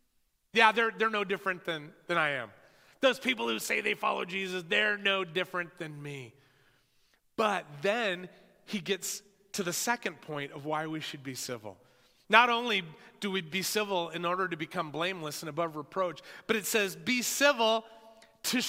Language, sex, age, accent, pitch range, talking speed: English, male, 30-49, American, 180-245 Hz, 175 wpm